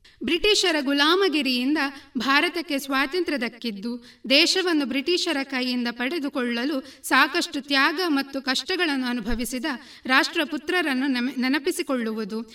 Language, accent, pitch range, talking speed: Kannada, native, 245-315 Hz, 80 wpm